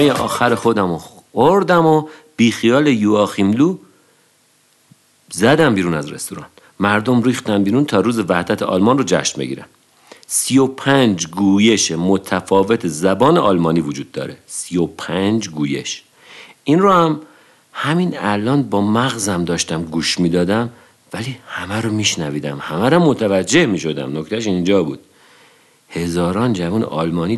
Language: Persian